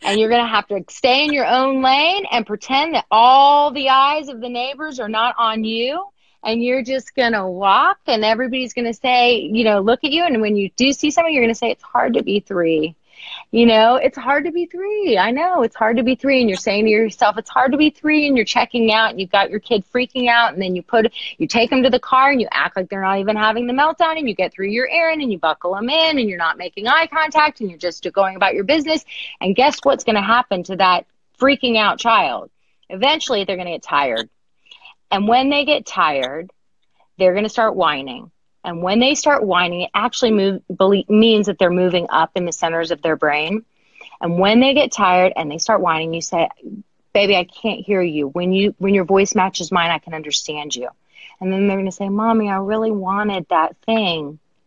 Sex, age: female, 30-49